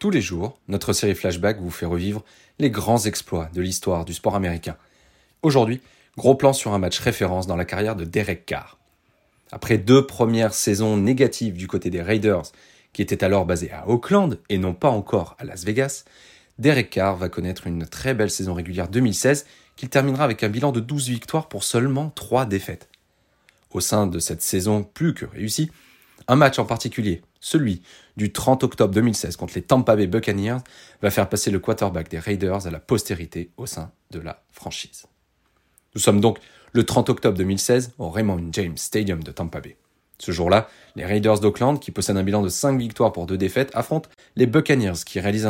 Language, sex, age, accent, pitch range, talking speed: French, male, 30-49, French, 95-125 Hz, 190 wpm